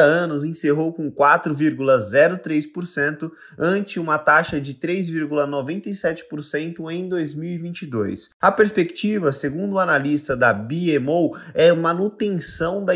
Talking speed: 95 wpm